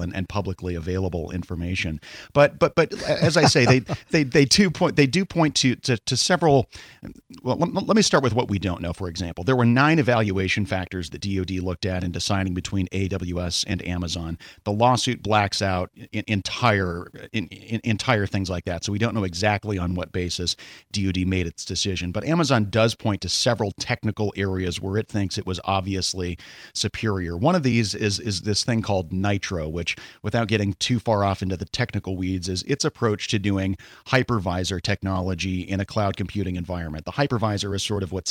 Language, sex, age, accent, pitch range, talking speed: English, male, 40-59, American, 95-115 Hz, 195 wpm